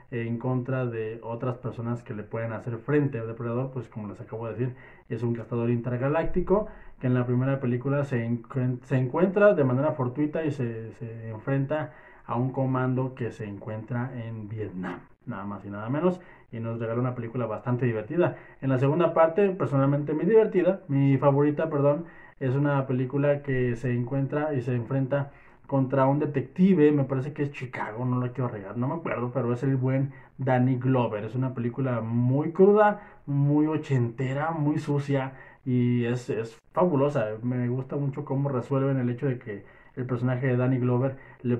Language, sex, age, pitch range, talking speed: Spanish, male, 20-39, 120-140 Hz, 180 wpm